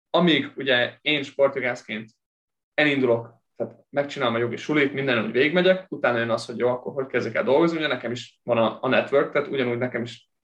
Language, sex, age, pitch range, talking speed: Hungarian, male, 20-39, 120-150 Hz, 190 wpm